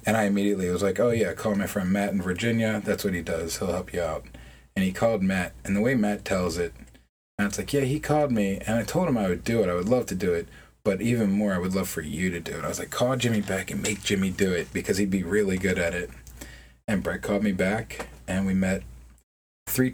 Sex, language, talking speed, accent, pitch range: male, English, 270 wpm, American, 90-105 Hz